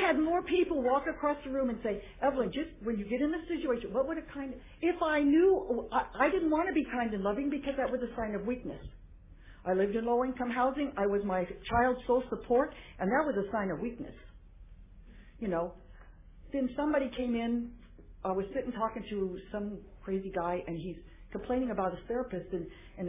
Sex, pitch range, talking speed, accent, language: female, 190-265 Hz, 210 wpm, American, English